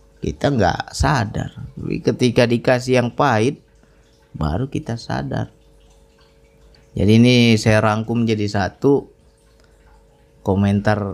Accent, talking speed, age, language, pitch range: native, 95 wpm, 20-39, Indonesian, 95-120 Hz